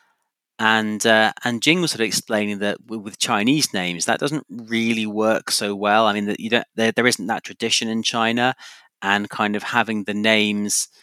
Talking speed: 195 wpm